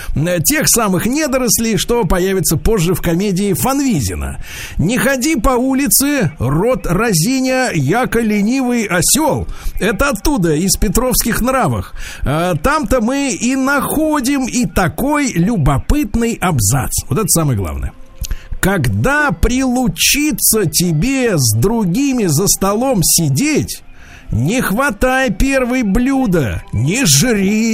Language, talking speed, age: Russian, 105 wpm, 50-69